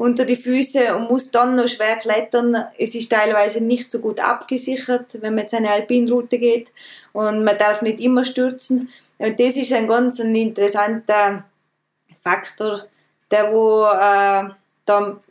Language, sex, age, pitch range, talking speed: German, female, 20-39, 210-245 Hz, 140 wpm